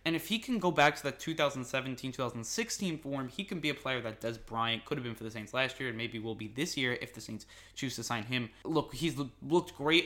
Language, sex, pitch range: English, male, 115-145 Hz